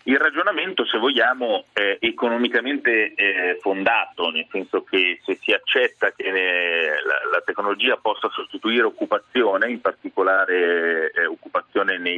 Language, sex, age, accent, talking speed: Italian, male, 30-49, native, 110 wpm